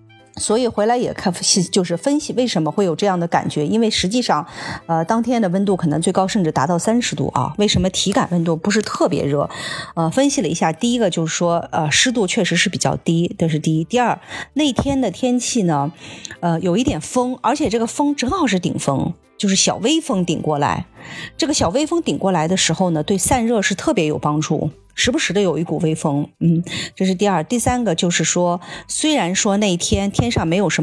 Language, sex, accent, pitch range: Chinese, female, native, 165-240 Hz